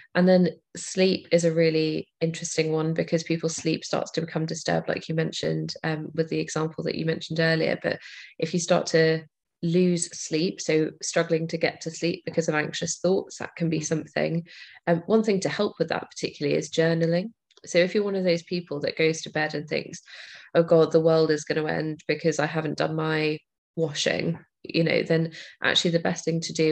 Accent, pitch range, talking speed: British, 155-170 Hz, 210 wpm